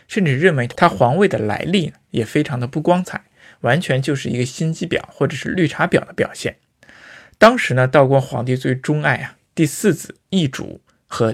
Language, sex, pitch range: Chinese, male, 120-165 Hz